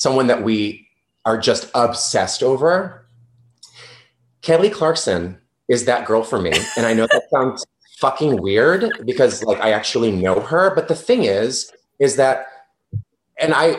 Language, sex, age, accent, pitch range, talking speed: English, male, 30-49, American, 130-195 Hz, 150 wpm